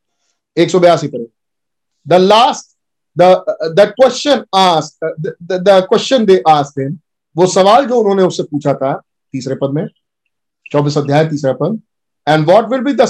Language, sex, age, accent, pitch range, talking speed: Hindi, male, 50-69, native, 155-235 Hz, 110 wpm